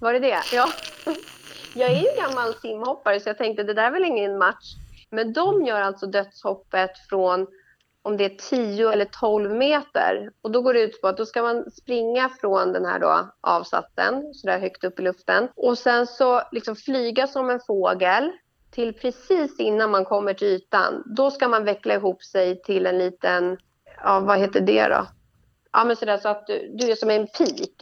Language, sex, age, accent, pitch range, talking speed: Swedish, female, 30-49, native, 190-245 Hz, 200 wpm